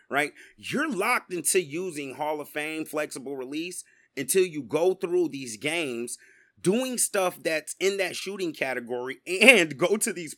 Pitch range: 135-195 Hz